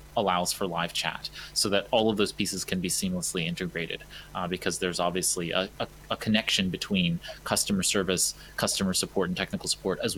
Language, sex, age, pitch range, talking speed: English, male, 30-49, 90-105 Hz, 185 wpm